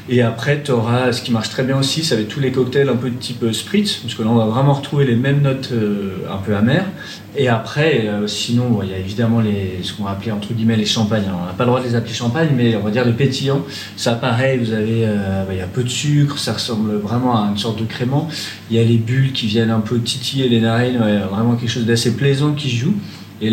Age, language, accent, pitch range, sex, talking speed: 40-59, French, French, 105-130 Hz, male, 275 wpm